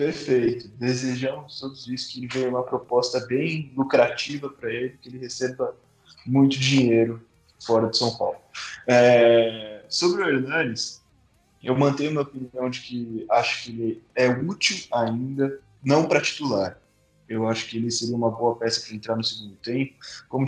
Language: Portuguese